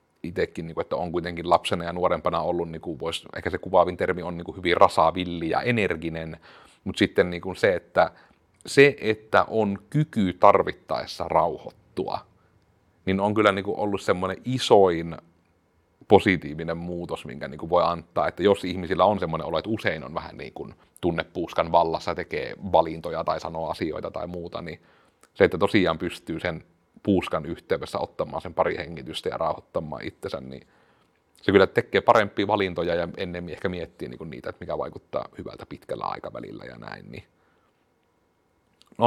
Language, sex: Finnish, male